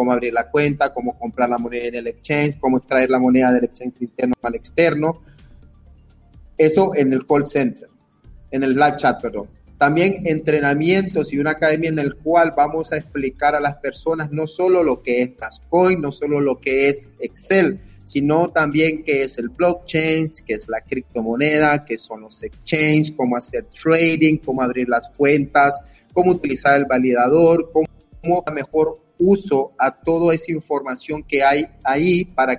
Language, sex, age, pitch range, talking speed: Spanish, male, 30-49, 130-160 Hz, 170 wpm